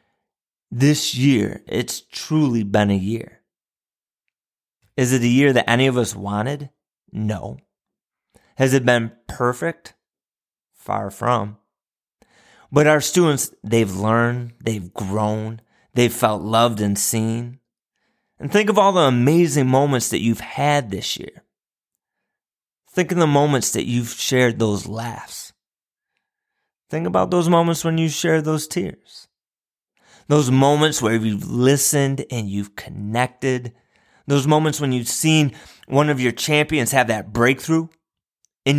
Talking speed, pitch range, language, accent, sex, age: 135 wpm, 110-150 Hz, English, American, male, 30-49